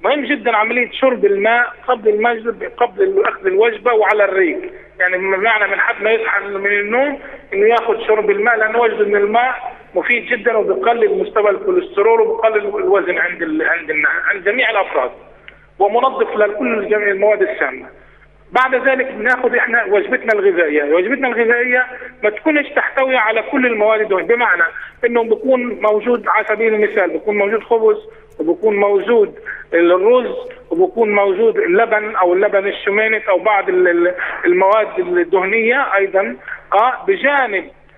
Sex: male